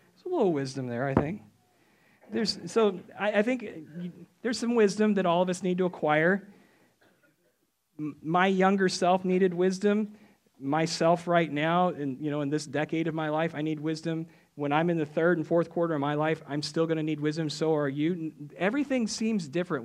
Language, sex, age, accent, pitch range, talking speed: English, male, 40-59, American, 145-185 Hz, 195 wpm